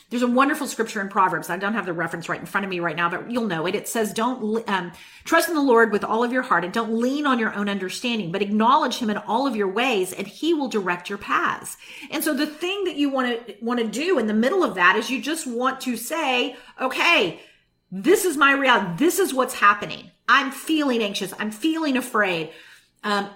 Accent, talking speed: American, 240 wpm